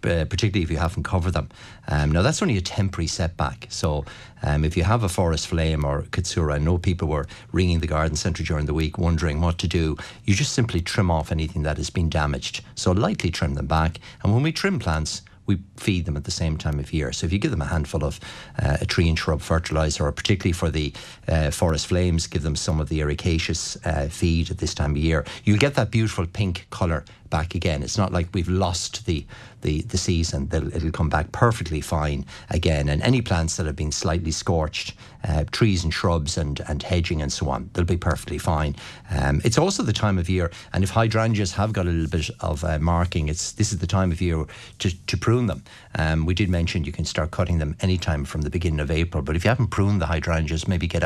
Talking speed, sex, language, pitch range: 235 wpm, male, English, 80-100 Hz